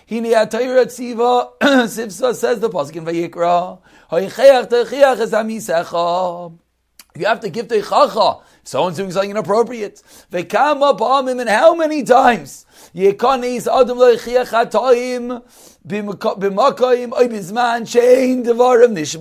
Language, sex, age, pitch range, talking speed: English, male, 40-59, 225-275 Hz, 60 wpm